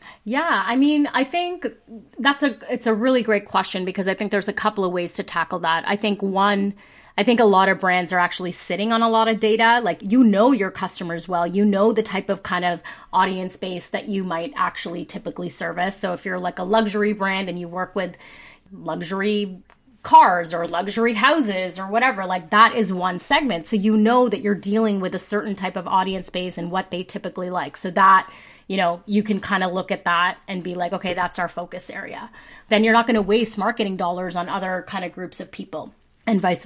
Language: English